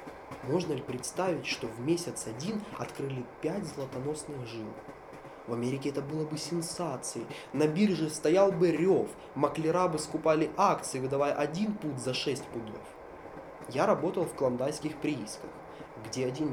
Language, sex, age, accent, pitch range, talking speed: Russian, male, 20-39, native, 125-180 Hz, 140 wpm